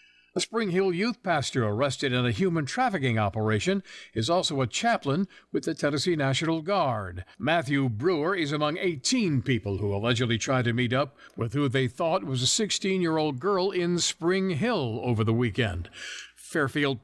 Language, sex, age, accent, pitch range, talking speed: English, male, 60-79, American, 120-170 Hz, 165 wpm